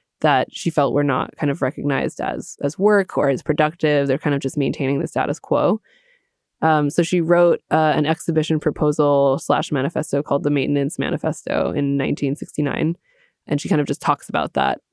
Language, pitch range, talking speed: English, 140-160 Hz, 185 wpm